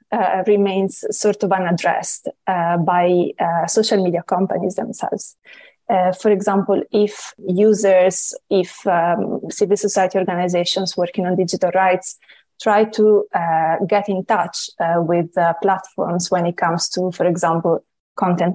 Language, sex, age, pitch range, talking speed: English, female, 20-39, 180-205 Hz, 140 wpm